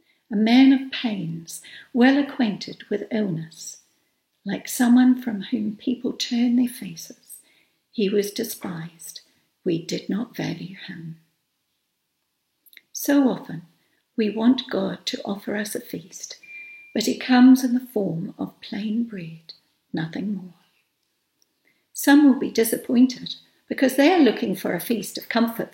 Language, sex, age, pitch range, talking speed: English, female, 60-79, 205-255 Hz, 135 wpm